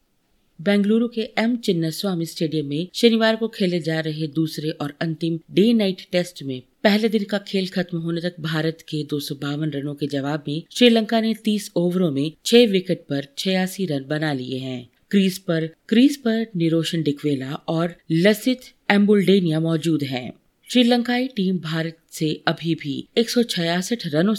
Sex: female